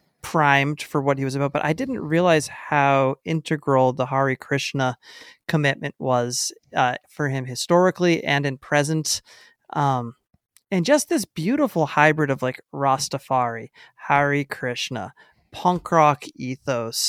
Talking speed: 135 wpm